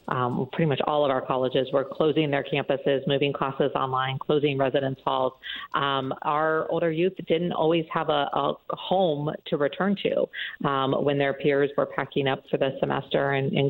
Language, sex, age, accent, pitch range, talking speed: English, female, 40-59, American, 140-165 Hz, 185 wpm